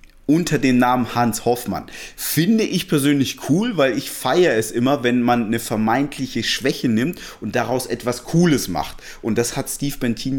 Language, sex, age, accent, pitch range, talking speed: German, male, 30-49, German, 110-135 Hz, 175 wpm